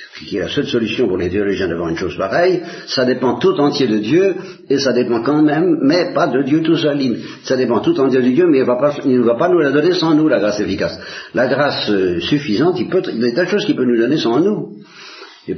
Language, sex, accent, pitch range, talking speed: Italian, male, French, 110-155 Hz, 260 wpm